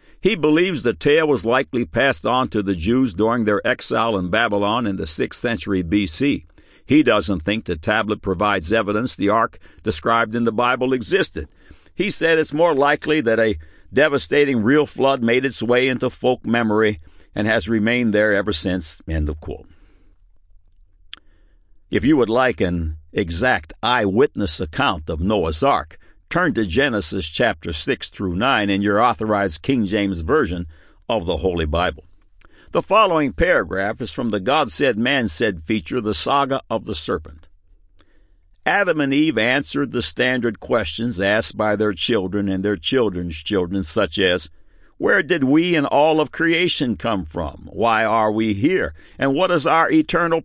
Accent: American